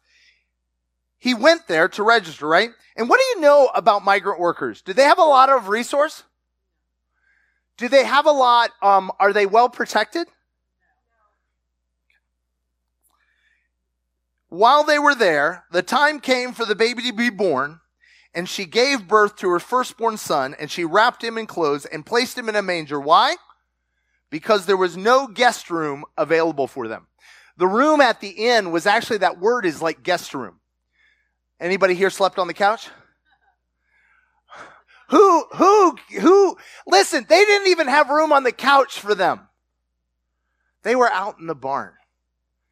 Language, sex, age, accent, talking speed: English, male, 30-49, American, 160 wpm